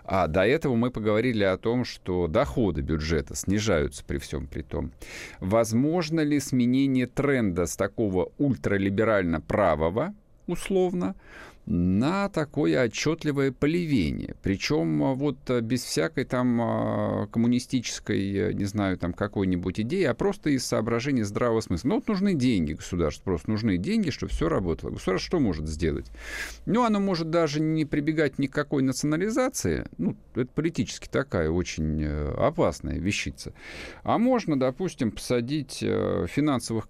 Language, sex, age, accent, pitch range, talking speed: Russian, male, 50-69, native, 90-150 Hz, 130 wpm